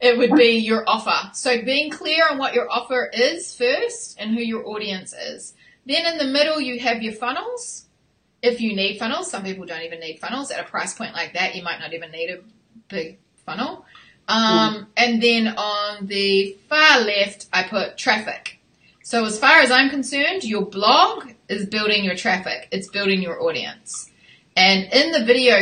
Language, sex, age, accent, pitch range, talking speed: English, female, 20-39, Australian, 195-255 Hz, 190 wpm